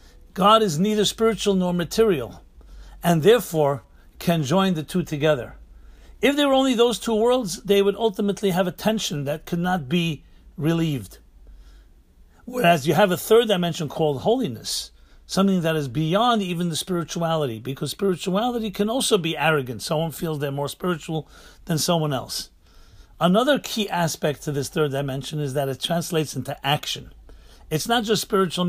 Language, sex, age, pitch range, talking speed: English, male, 60-79, 140-185 Hz, 160 wpm